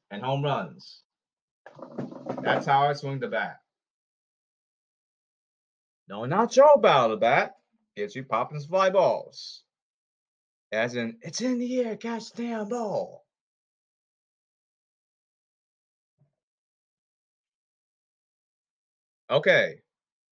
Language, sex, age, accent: English, male, 30-49, American